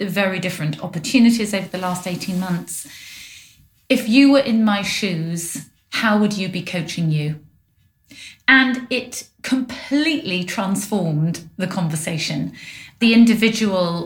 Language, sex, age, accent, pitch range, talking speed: English, female, 30-49, British, 180-220 Hz, 120 wpm